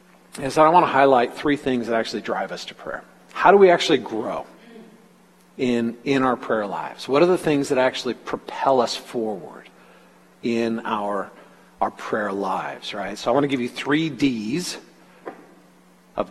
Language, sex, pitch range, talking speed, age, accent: English, male, 115-155 Hz, 175 wpm, 50-69, American